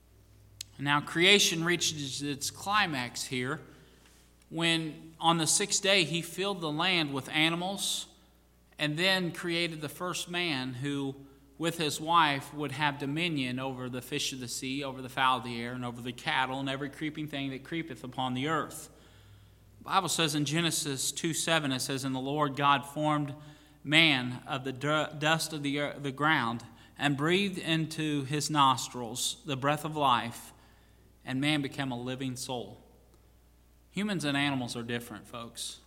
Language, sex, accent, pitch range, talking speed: English, male, American, 130-170 Hz, 160 wpm